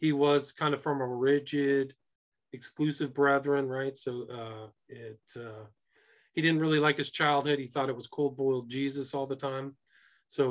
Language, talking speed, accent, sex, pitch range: English, 170 wpm, American, male, 130-160 Hz